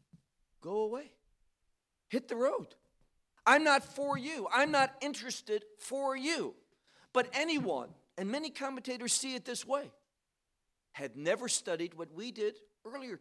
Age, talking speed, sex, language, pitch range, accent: 50-69, 135 wpm, male, English, 200-270 Hz, American